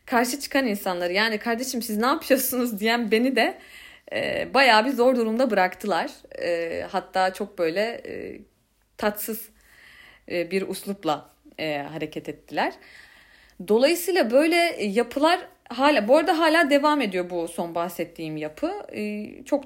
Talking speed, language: 135 wpm, Turkish